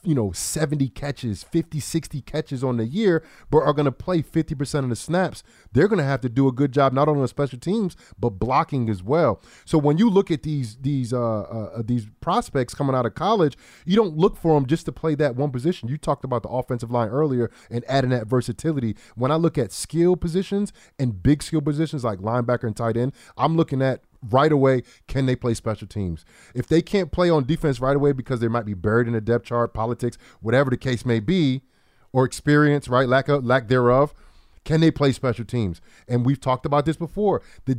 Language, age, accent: English, 30-49, American